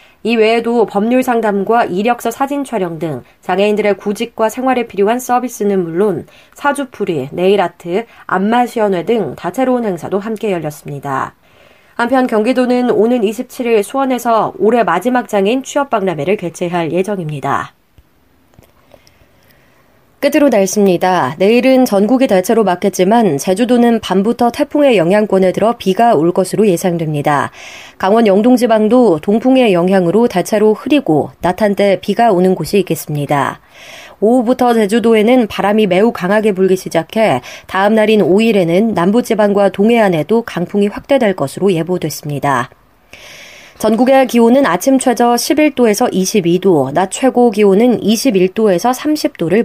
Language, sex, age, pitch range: Korean, female, 30-49, 180-235 Hz